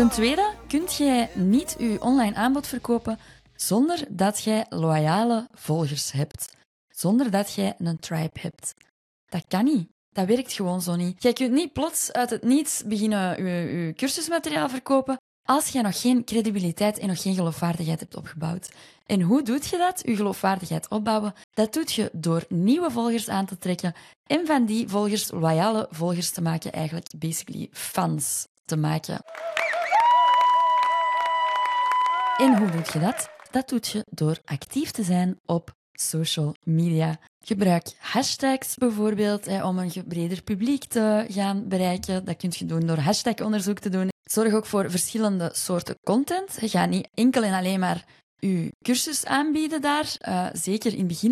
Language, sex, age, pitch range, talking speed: Dutch, female, 20-39, 180-255 Hz, 160 wpm